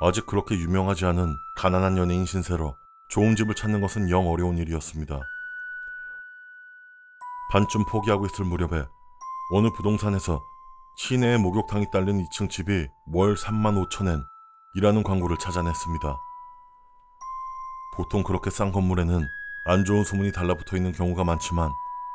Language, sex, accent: Korean, male, native